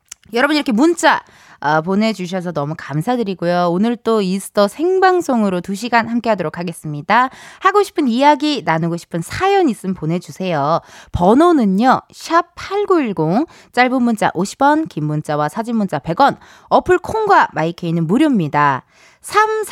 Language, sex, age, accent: Korean, female, 20-39, native